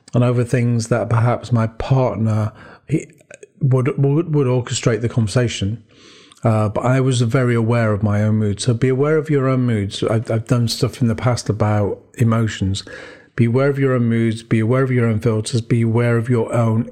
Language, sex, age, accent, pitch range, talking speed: English, male, 40-59, British, 115-130 Hz, 200 wpm